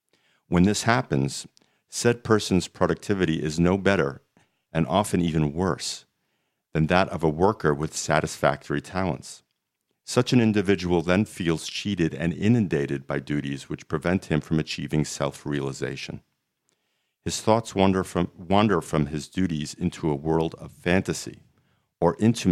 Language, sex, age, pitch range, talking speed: English, male, 50-69, 75-95 Hz, 140 wpm